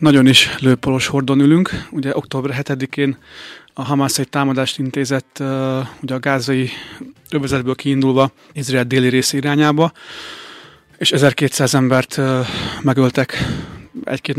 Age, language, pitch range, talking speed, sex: 30-49, Hungarian, 130-150 Hz, 110 wpm, male